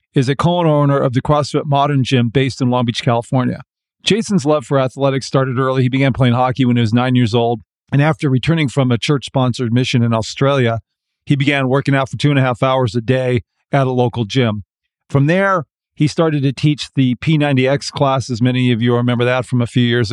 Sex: male